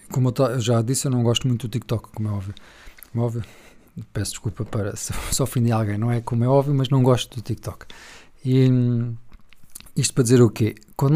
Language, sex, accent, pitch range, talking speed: Portuguese, male, Portuguese, 110-130 Hz, 210 wpm